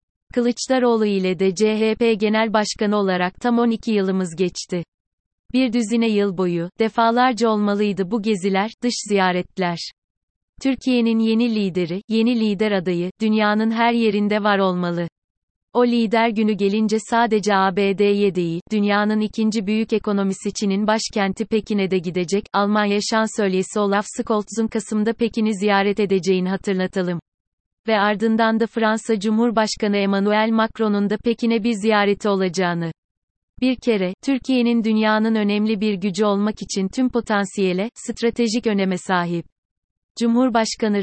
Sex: female